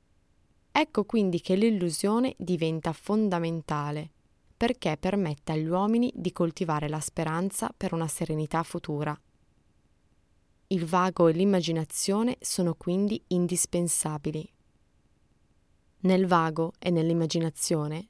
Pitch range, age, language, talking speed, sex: 160-200 Hz, 20-39, Italian, 95 wpm, female